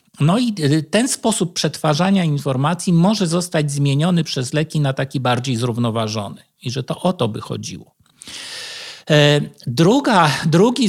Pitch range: 135-170 Hz